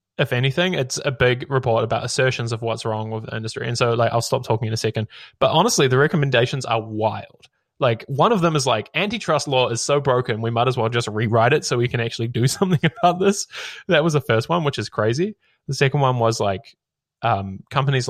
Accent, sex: Australian, male